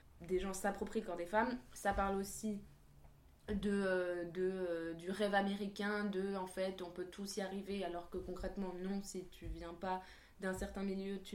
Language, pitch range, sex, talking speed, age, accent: French, 180-210 Hz, female, 180 wpm, 20-39, French